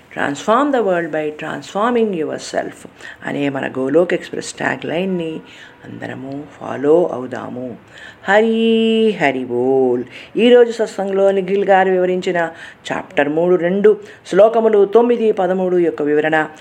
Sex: female